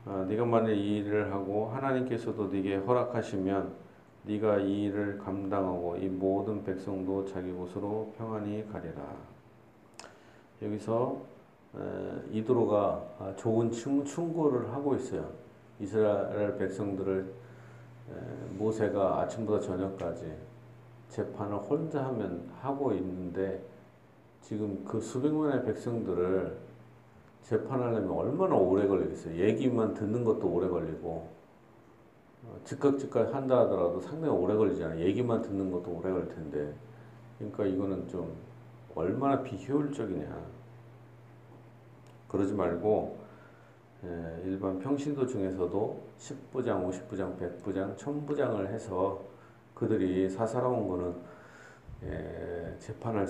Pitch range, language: 95-120 Hz, Korean